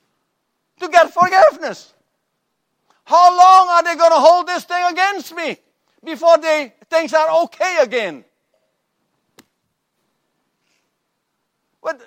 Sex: male